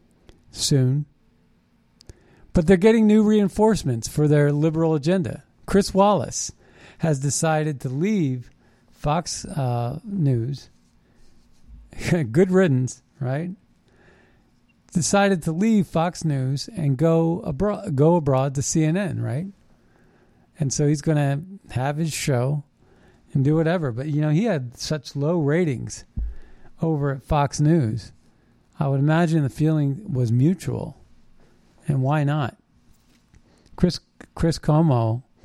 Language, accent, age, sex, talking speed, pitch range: English, American, 40-59, male, 120 wpm, 130-170 Hz